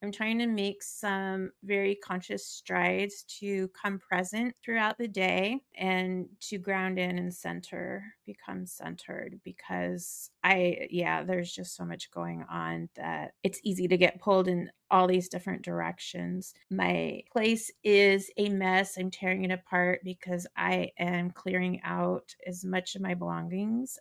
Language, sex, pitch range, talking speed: English, female, 185-230 Hz, 150 wpm